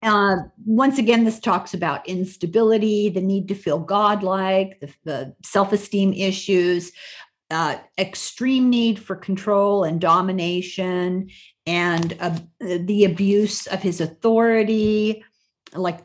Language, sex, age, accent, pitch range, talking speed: English, female, 50-69, American, 180-220 Hz, 115 wpm